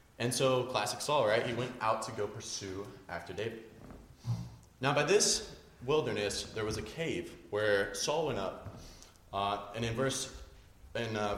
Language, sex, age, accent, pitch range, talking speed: English, male, 30-49, American, 110-145 Hz, 165 wpm